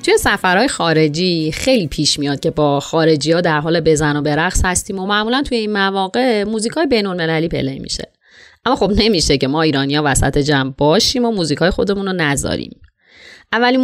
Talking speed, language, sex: 190 wpm, Persian, female